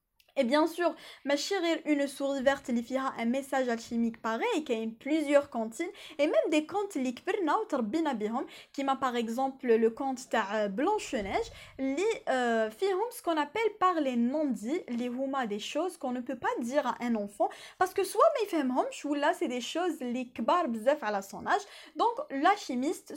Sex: female